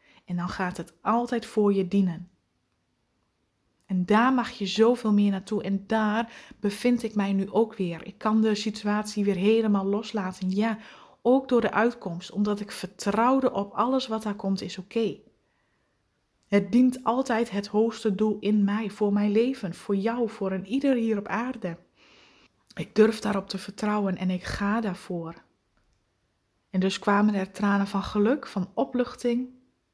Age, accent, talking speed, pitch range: 20-39, Dutch, 165 wpm, 190-225 Hz